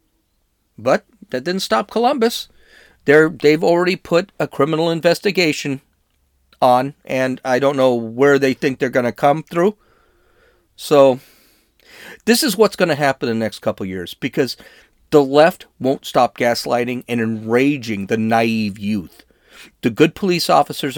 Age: 40-59